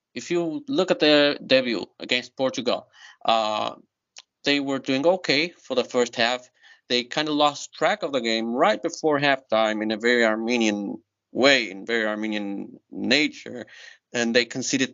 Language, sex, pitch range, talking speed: English, male, 110-135 Hz, 160 wpm